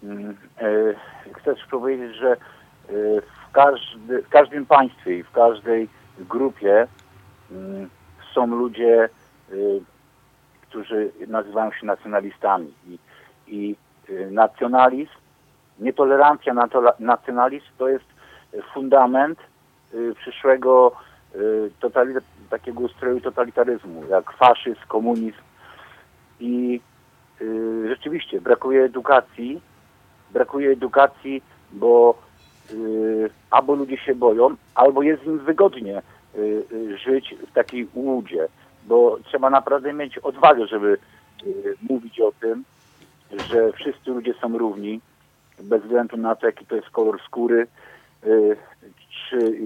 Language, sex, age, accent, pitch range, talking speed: Polish, male, 50-69, native, 110-135 Hz, 90 wpm